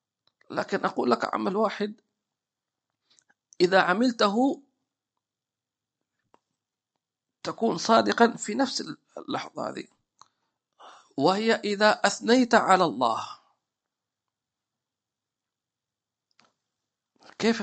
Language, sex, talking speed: English, male, 65 wpm